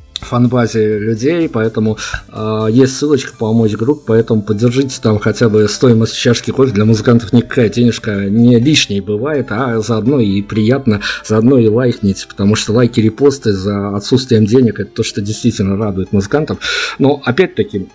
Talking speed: 150 wpm